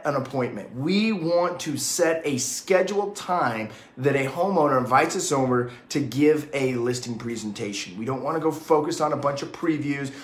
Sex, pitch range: male, 130-180 Hz